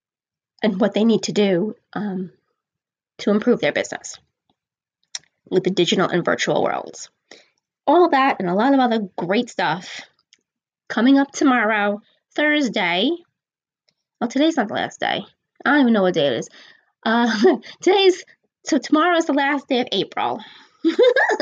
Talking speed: 150 wpm